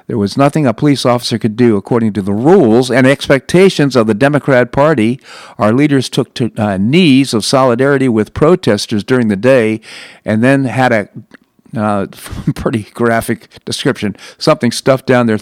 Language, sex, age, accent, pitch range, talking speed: English, male, 50-69, American, 105-130 Hz, 165 wpm